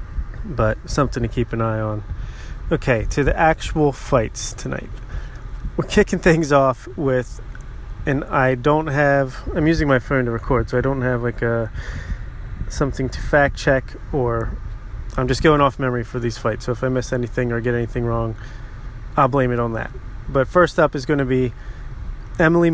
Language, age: English, 30-49